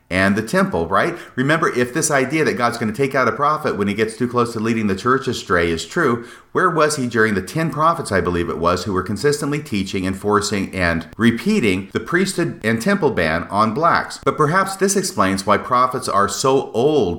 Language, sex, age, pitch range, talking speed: English, male, 40-59, 95-150 Hz, 215 wpm